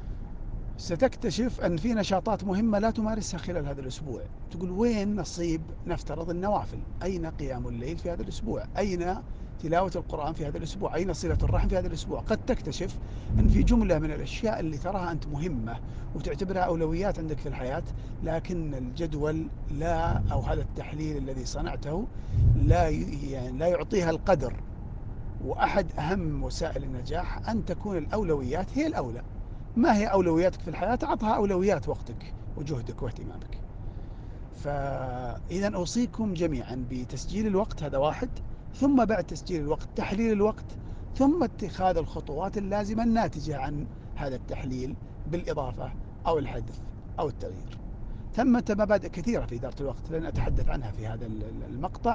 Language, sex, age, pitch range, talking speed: Arabic, male, 50-69, 115-180 Hz, 135 wpm